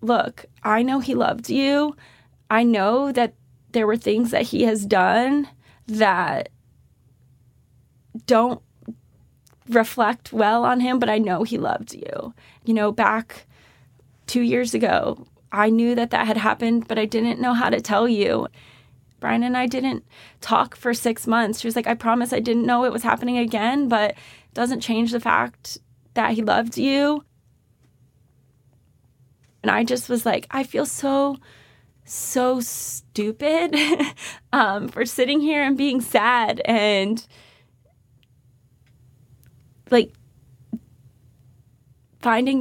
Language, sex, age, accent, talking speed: English, female, 20-39, American, 140 wpm